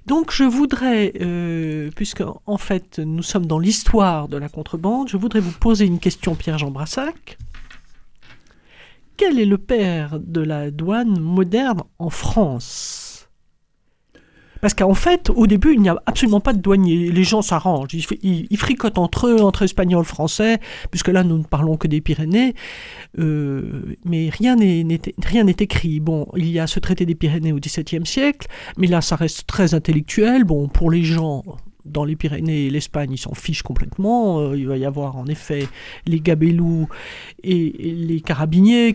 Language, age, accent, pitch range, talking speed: French, 50-69, French, 160-205 Hz, 175 wpm